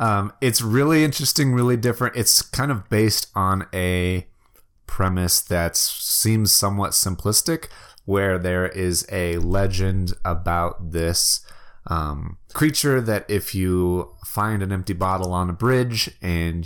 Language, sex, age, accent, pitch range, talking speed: English, male, 30-49, American, 90-115 Hz, 135 wpm